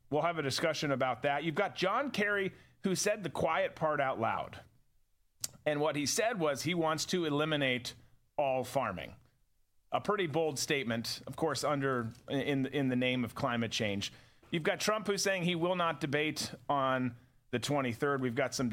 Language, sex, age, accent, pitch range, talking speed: English, male, 40-59, American, 130-175 Hz, 185 wpm